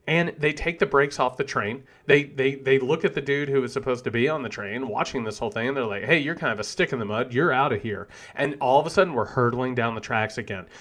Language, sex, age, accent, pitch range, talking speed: English, male, 40-59, American, 125-180 Hz, 300 wpm